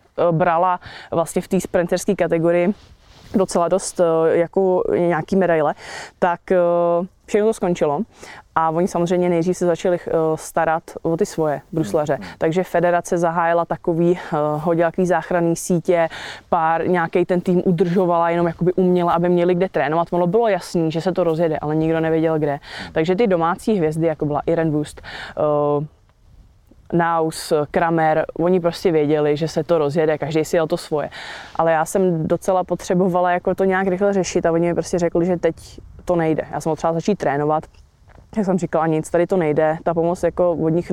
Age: 20-39